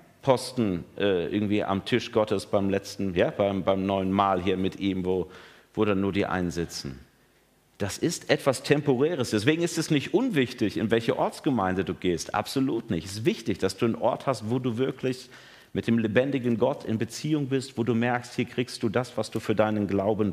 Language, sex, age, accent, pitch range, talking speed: German, male, 50-69, German, 95-135 Hz, 200 wpm